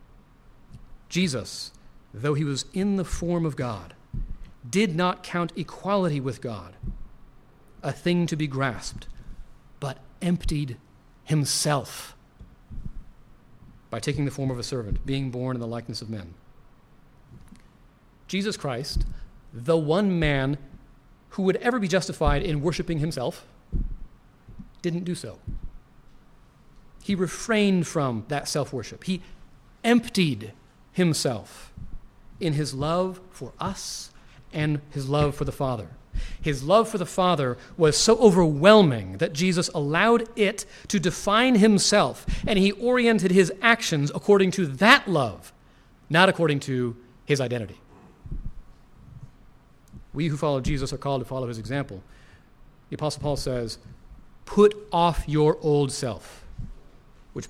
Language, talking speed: English, 125 wpm